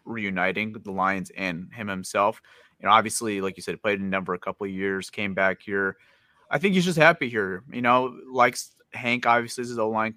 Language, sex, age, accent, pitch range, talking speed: English, male, 30-49, American, 105-125 Hz, 225 wpm